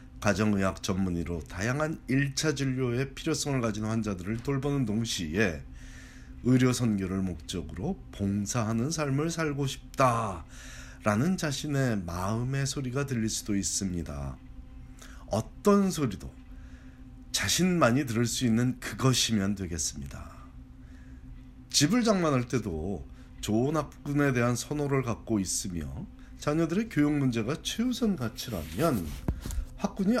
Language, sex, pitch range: Korean, male, 85-140 Hz